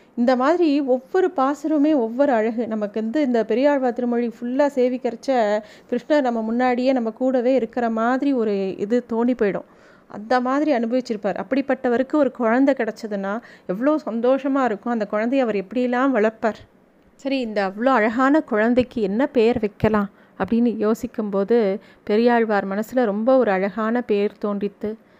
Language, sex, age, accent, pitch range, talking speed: Tamil, female, 30-49, native, 220-265 Hz, 135 wpm